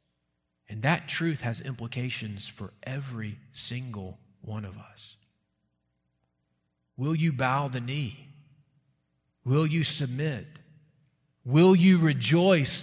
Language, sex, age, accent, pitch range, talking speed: English, male, 40-59, American, 105-135 Hz, 105 wpm